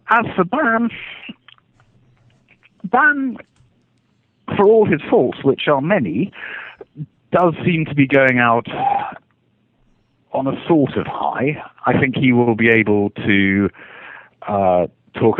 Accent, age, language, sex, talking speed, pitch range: British, 40-59, English, male, 120 wpm, 90-125 Hz